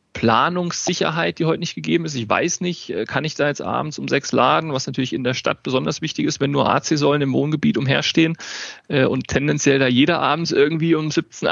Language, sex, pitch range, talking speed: German, male, 120-145 Hz, 205 wpm